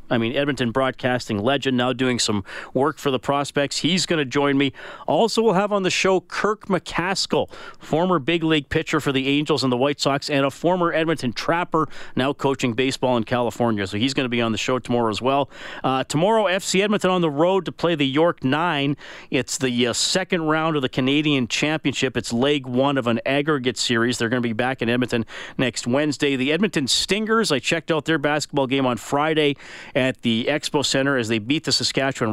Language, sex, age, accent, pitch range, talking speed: English, male, 40-59, American, 125-150 Hz, 210 wpm